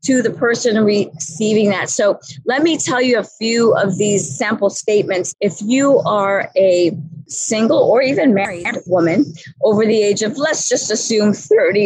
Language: English